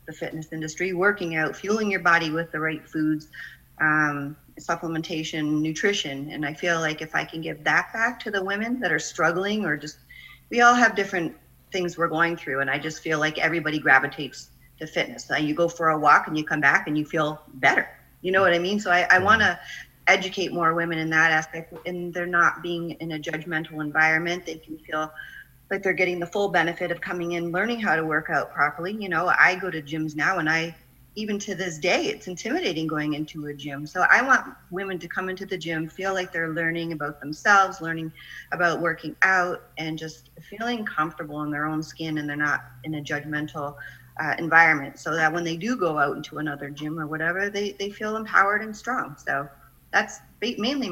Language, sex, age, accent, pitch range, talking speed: English, female, 30-49, American, 155-180 Hz, 210 wpm